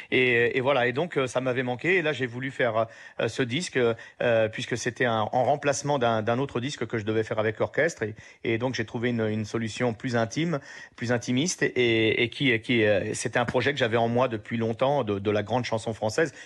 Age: 40-59